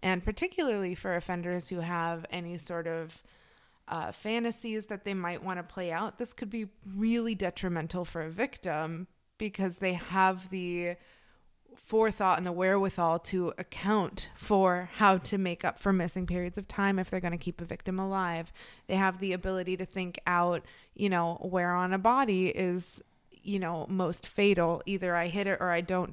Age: 20-39